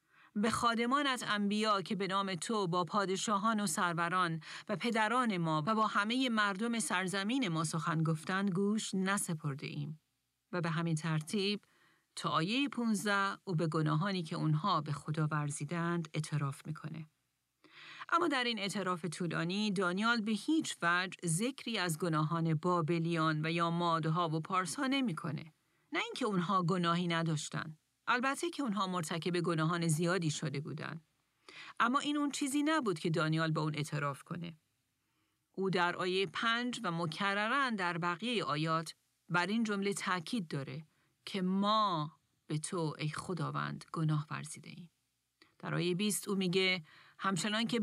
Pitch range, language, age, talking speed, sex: 160-210 Hz, Persian, 40-59, 145 wpm, female